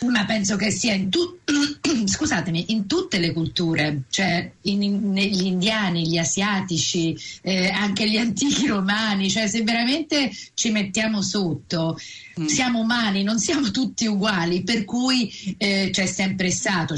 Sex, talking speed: female, 145 wpm